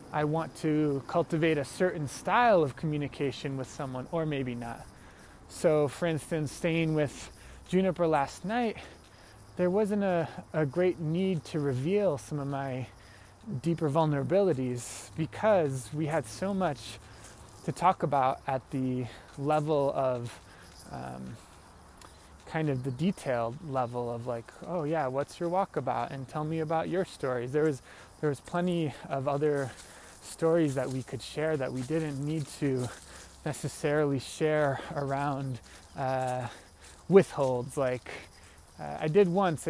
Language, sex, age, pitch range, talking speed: English, male, 20-39, 125-165 Hz, 140 wpm